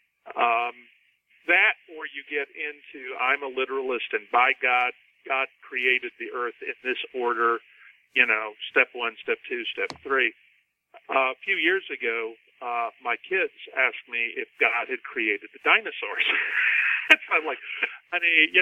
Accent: American